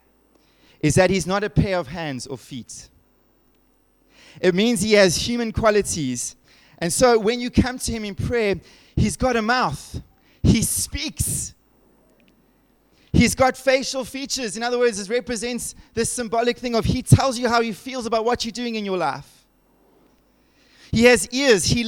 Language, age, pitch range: English, 30-49, 155-225 Hz